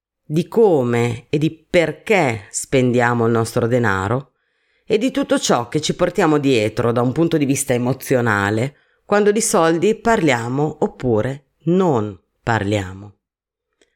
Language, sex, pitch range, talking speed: Italian, female, 120-160 Hz, 130 wpm